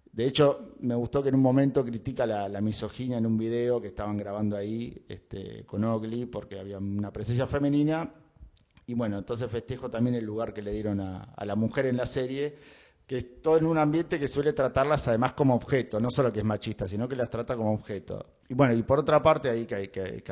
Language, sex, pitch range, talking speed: Spanish, male, 105-135 Hz, 225 wpm